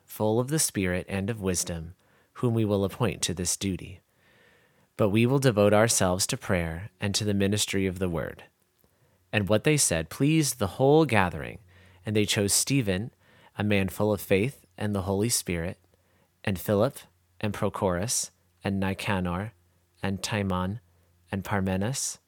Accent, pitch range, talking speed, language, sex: American, 95-120 Hz, 160 wpm, English, male